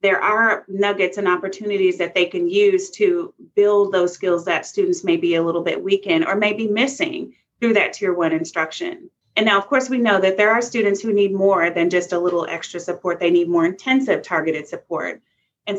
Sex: female